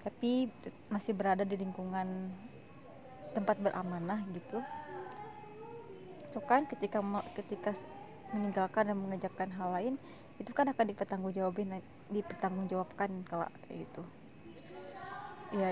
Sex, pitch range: female, 185-205 Hz